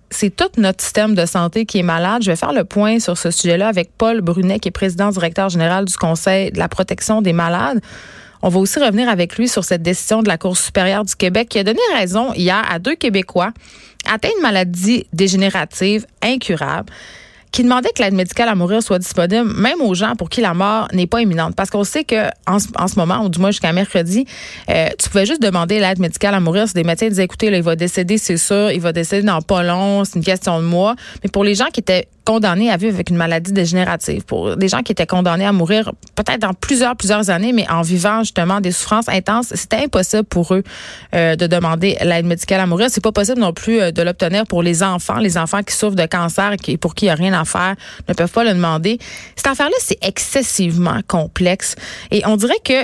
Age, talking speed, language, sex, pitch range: 30-49, 235 wpm, French, female, 180-220 Hz